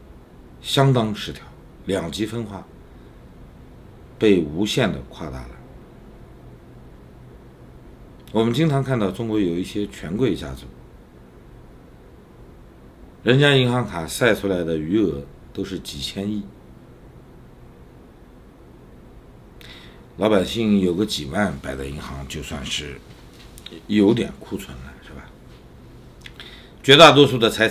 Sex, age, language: male, 60-79, Chinese